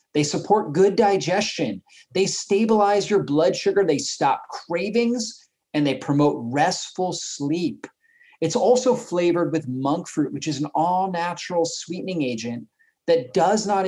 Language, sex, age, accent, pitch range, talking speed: English, male, 30-49, American, 155-205 Hz, 140 wpm